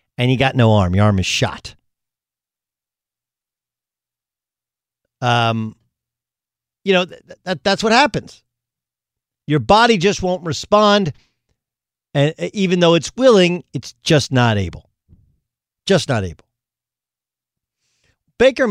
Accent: American